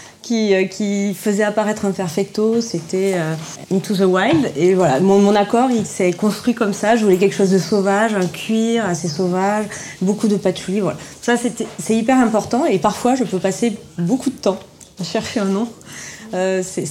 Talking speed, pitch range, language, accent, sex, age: 195 wpm, 170-215 Hz, French, French, female, 30-49